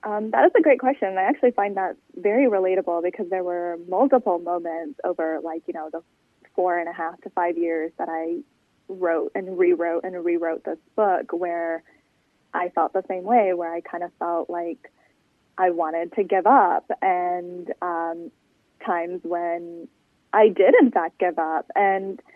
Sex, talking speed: female, 175 wpm